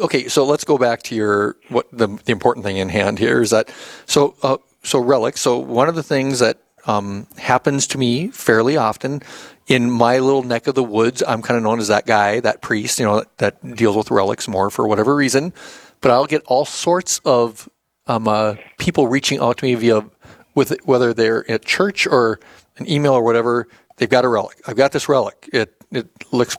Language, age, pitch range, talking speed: English, 40-59, 115-135 Hz, 210 wpm